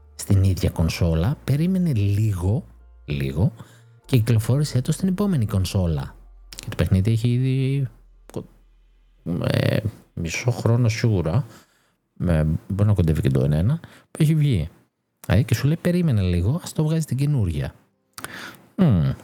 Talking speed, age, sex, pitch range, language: 135 wpm, 50-69, male, 85-130 Hz, Greek